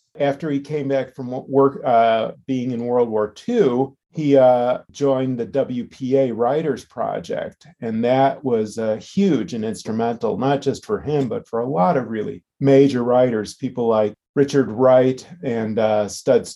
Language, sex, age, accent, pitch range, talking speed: English, male, 40-59, American, 115-140 Hz, 165 wpm